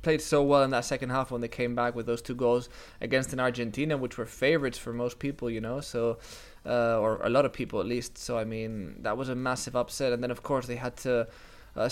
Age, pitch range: 20-39, 125-140 Hz